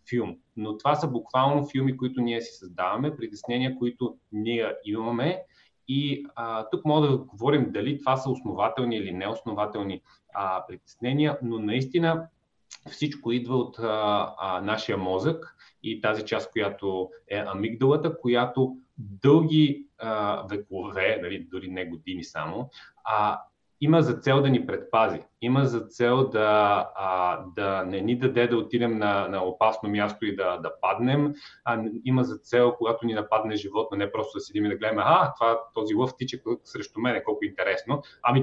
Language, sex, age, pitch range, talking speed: Bulgarian, male, 30-49, 105-135 Hz, 160 wpm